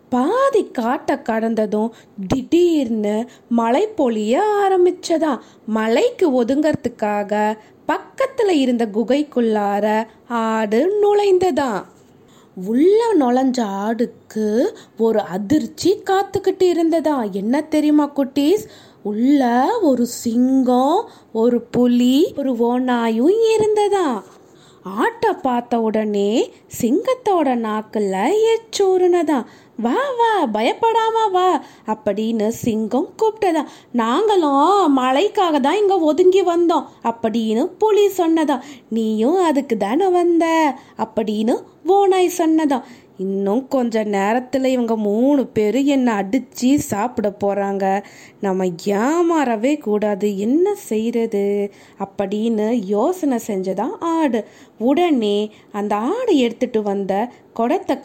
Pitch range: 220-345 Hz